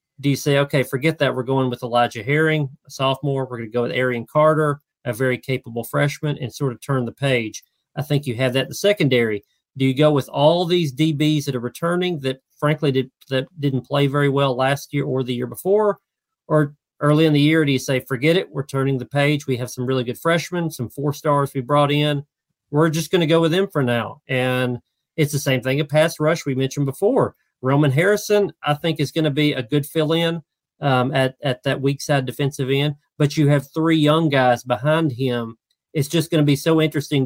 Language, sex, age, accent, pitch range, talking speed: English, male, 40-59, American, 130-150 Hz, 225 wpm